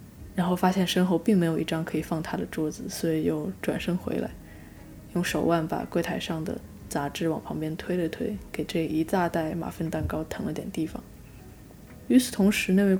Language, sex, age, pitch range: Chinese, female, 10-29, 160-185 Hz